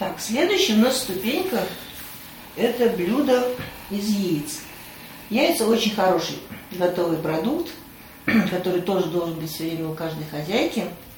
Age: 40-59